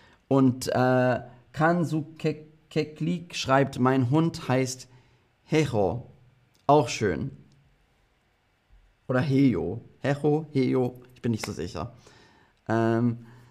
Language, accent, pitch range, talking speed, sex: German, German, 115-155 Hz, 95 wpm, male